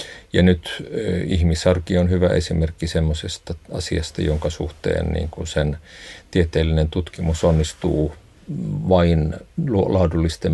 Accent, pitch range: native, 80-90 Hz